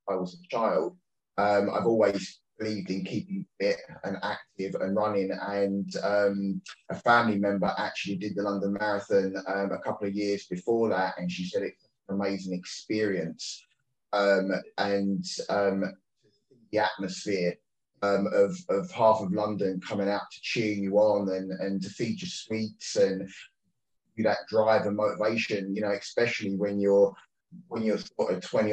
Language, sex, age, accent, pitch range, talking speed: English, male, 10-29, British, 100-110 Hz, 165 wpm